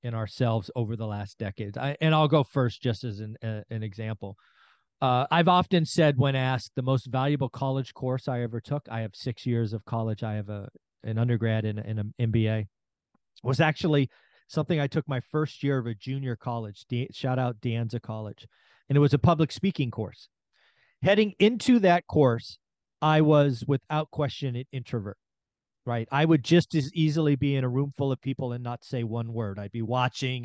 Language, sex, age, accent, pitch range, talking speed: English, male, 40-59, American, 120-145 Hz, 200 wpm